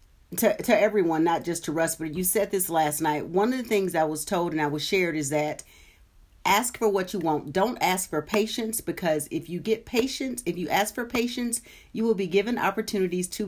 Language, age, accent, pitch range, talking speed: English, 50-69, American, 155-210 Hz, 225 wpm